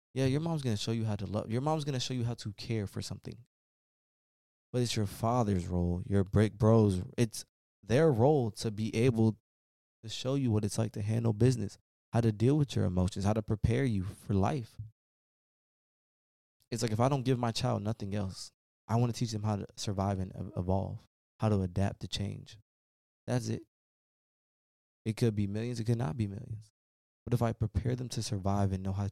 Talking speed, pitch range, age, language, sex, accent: 210 wpm, 95-120 Hz, 20-39, English, male, American